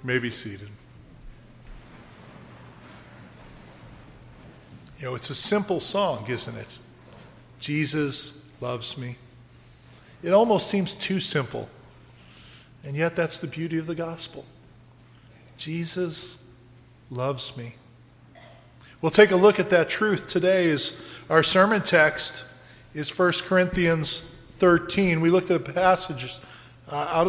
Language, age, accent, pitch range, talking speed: English, 40-59, American, 130-175 Hz, 115 wpm